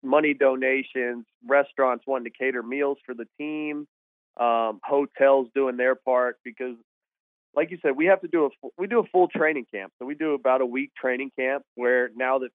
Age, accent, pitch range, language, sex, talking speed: 30-49, American, 125-150 Hz, English, male, 195 wpm